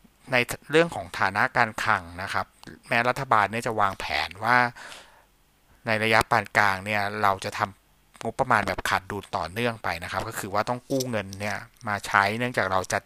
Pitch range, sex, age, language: 95-115 Hz, male, 60-79, Thai